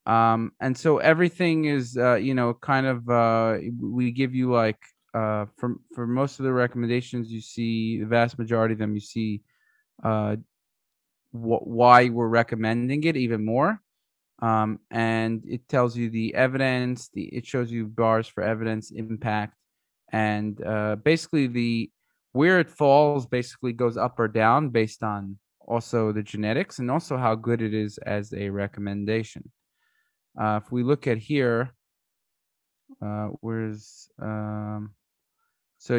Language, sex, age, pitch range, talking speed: English, male, 20-39, 110-130 Hz, 150 wpm